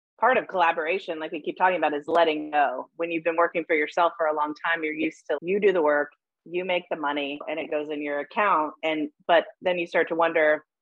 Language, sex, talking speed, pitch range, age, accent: English, female, 250 wpm, 160-185 Hz, 30-49, American